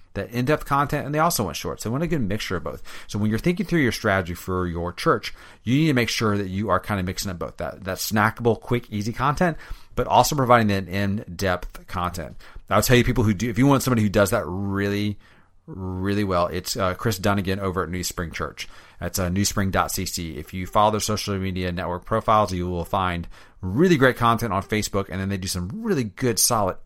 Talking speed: 230 wpm